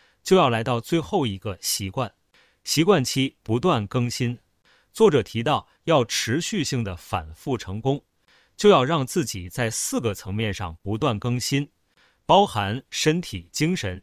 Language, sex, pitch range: Chinese, male, 105-145 Hz